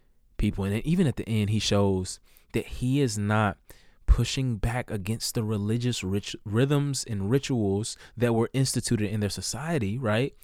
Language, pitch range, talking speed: English, 115-160 Hz, 160 wpm